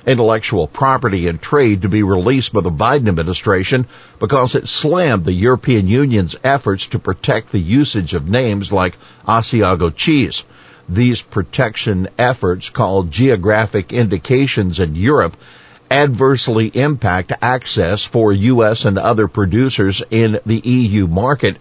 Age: 50-69